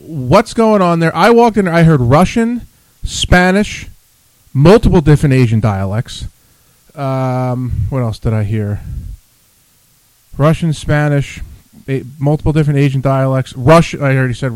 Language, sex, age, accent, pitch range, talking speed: English, male, 40-59, American, 120-170 Hz, 130 wpm